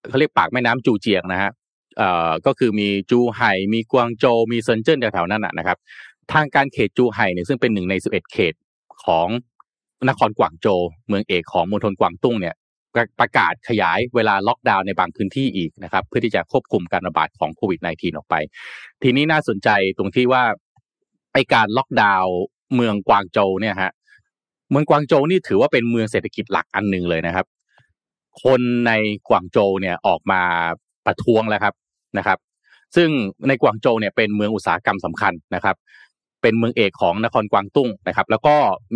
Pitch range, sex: 95-120 Hz, male